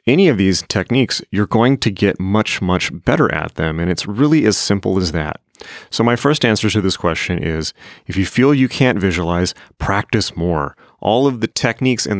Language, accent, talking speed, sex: English, American, 200 wpm, male